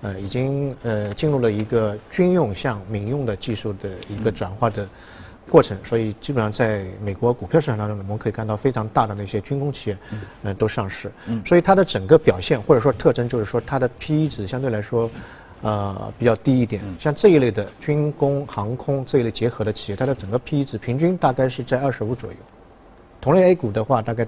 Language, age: Chinese, 50-69